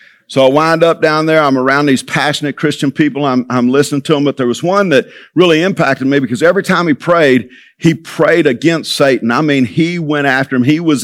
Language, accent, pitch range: English, American, 130-160 Hz